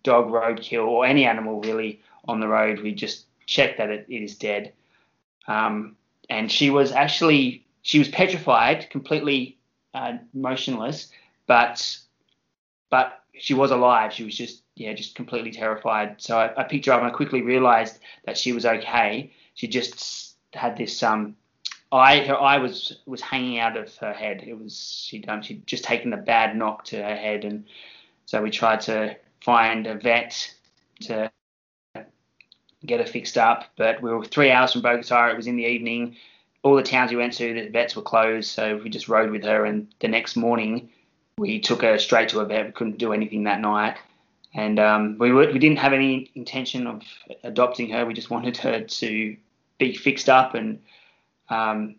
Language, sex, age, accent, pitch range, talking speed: English, male, 20-39, Australian, 110-130 Hz, 185 wpm